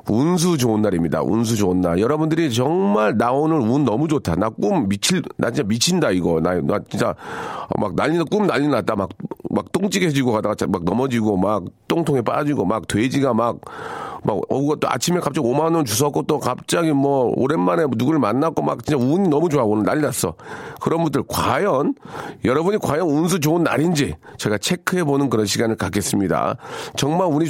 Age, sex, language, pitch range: 40-59, male, Korean, 110-160 Hz